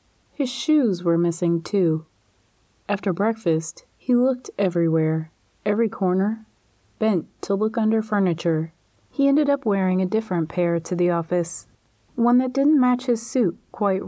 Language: English